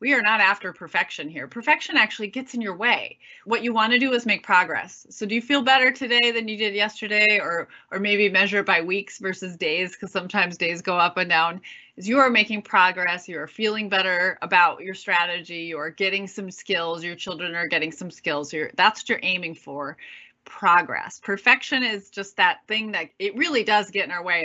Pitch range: 180-230 Hz